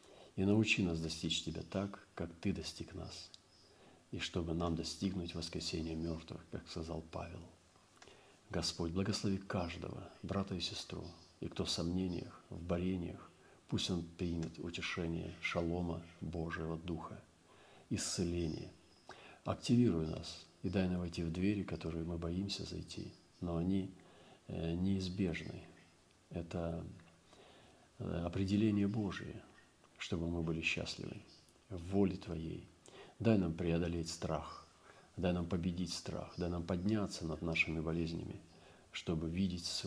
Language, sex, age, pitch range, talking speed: Russian, male, 50-69, 80-95 Hz, 120 wpm